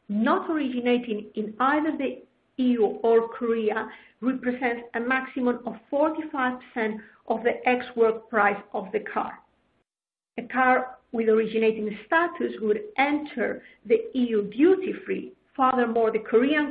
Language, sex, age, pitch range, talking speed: English, female, 50-69, 225-270 Hz, 120 wpm